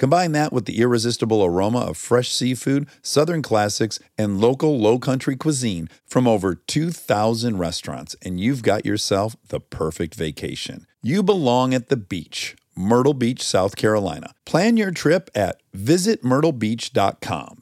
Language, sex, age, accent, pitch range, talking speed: English, male, 50-69, American, 100-150 Hz, 135 wpm